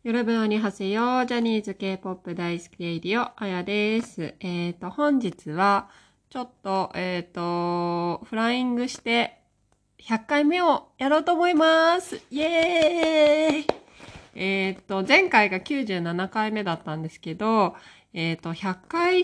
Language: Japanese